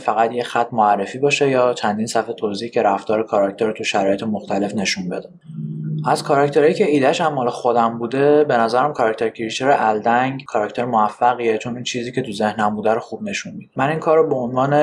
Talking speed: 200 wpm